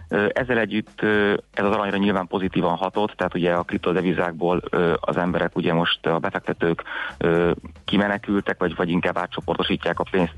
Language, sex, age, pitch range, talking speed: Hungarian, male, 30-49, 85-100 Hz, 145 wpm